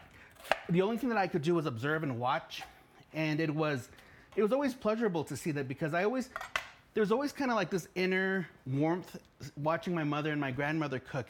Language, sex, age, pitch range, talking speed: English, male, 30-49, 140-190 Hz, 205 wpm